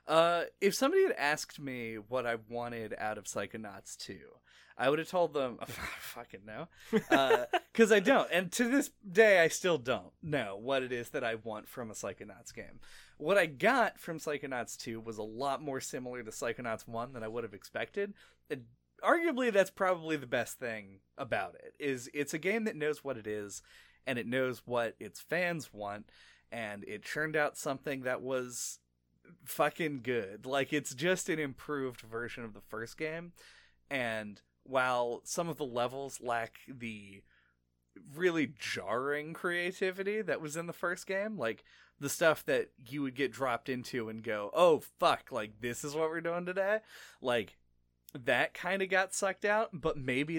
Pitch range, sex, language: 115-175 Hz, male, English